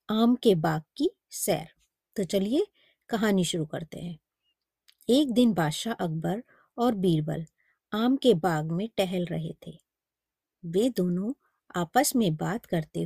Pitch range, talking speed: 175-240 Hz, 140 wpm